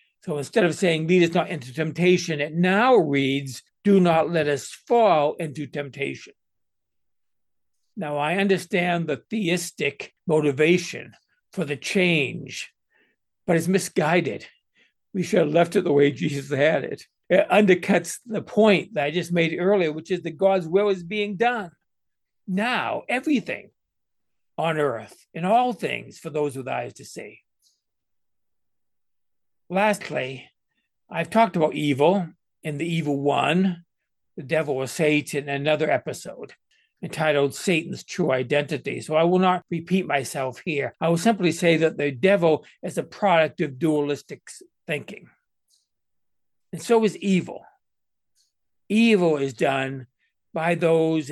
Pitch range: 150-190 Hz